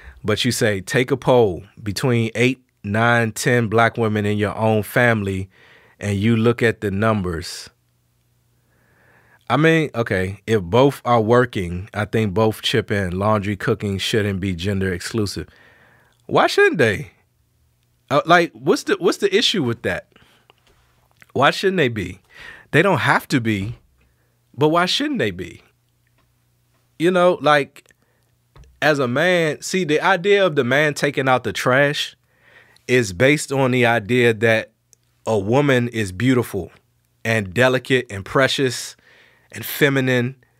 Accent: American